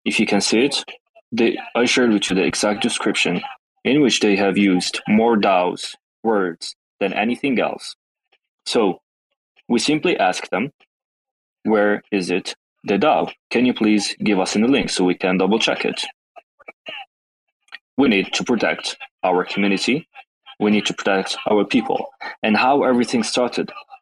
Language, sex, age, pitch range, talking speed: English, male, 20-39, 95-125 Hz, 155 wpm